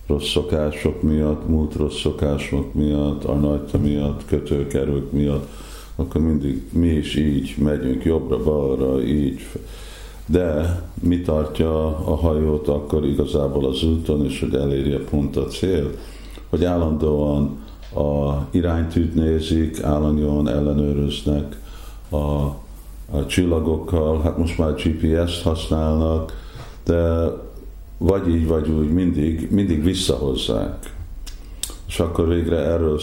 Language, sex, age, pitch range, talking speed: Hungarian, male, 50-69, 70-85 Hz, 115 wpm